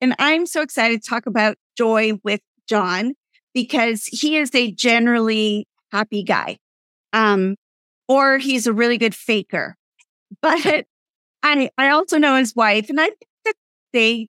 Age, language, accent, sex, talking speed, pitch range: 40-59, English, American, female, 150 wpm, 210-255 Hz